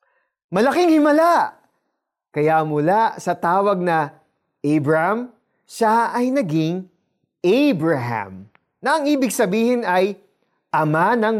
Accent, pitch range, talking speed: native, 170-245 Hz, 100 wpm